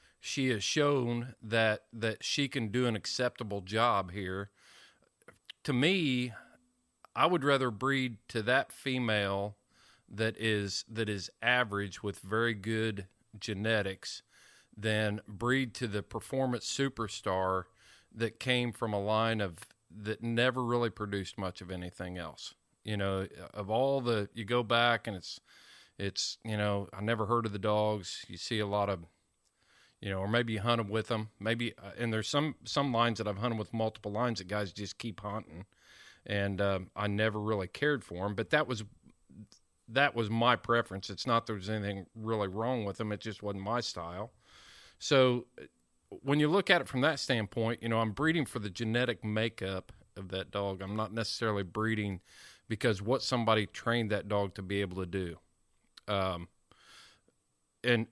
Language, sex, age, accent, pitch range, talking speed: English, male, 40-59, American, 100-120 Hz, 170 wpm